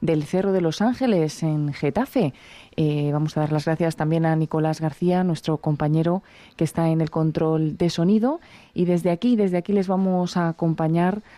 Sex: female